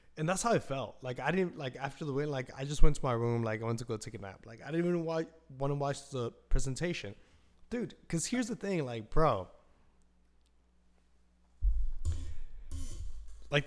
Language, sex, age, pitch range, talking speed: English, male, 20-39, 100-130 Hz, 200 wpm